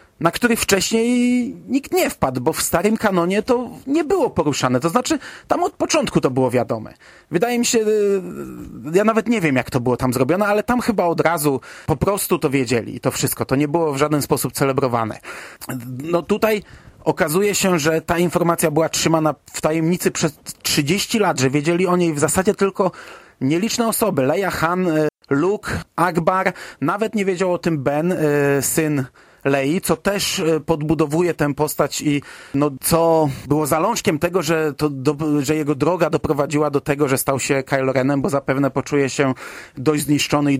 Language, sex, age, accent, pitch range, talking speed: Polish, male, 30-49, native, 140-190 Hz, 175 wpm